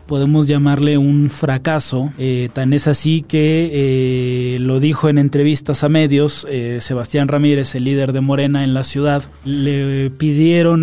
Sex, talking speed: male, 155 wpm